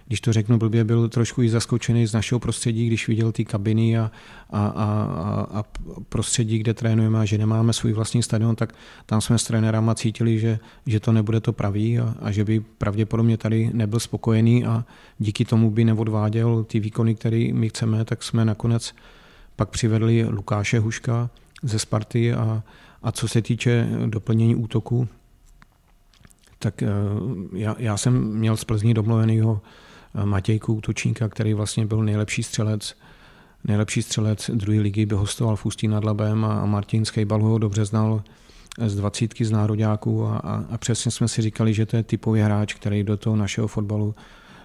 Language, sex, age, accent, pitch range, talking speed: Czech, male, 40-59, native, 105-115 Hz, 165 wpm